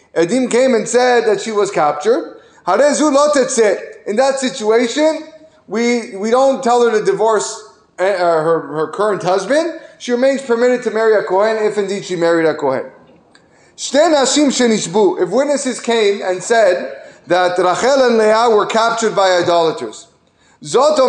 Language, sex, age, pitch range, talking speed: English, male, 30-49, 205-260 Hz, 140 wpm